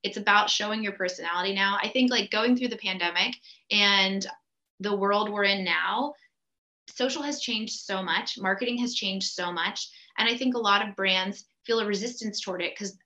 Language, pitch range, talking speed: English, 195-250 Hz, 195 wpm